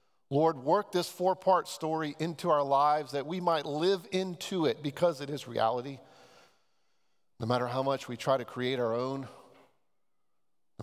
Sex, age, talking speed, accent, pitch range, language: male, 40-59, 160 wpm, American, 125-175 Hz, English